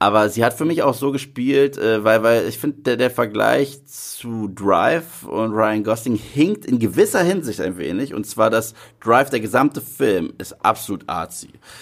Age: 30-49